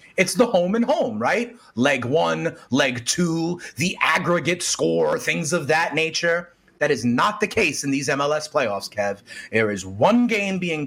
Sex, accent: male, American